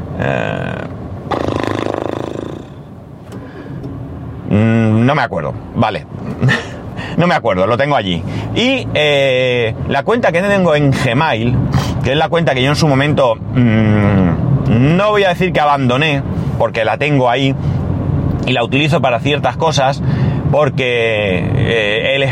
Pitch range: 125-150 Hz